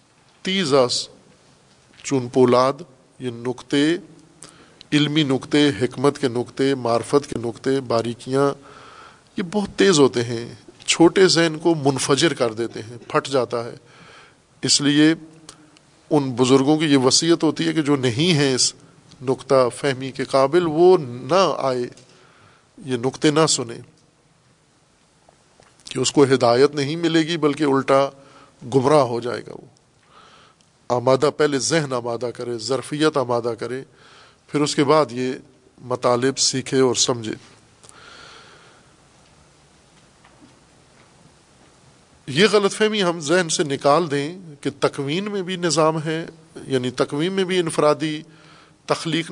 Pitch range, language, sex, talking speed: 130-155 Hz, Urdu, male, 130 wpm